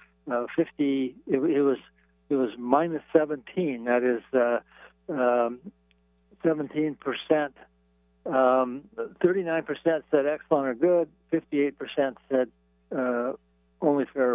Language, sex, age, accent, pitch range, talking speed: English, male, 60-79, American, 115-150 Hz, 100 wpm